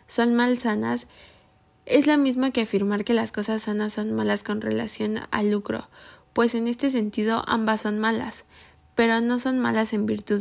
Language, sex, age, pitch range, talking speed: Spanish, female, 10-29, 200-230 Hz, 180 wpm